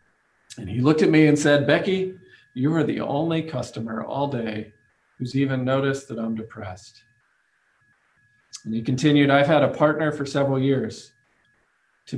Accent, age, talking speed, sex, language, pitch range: American, 40-59, 160 wpm, male, English, 120-145 Hz